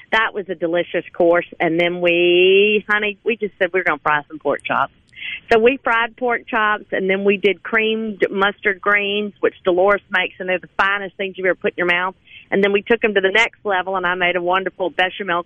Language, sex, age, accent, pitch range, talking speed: English, female, 40-59, American, 180-240 Hz, 235 wpm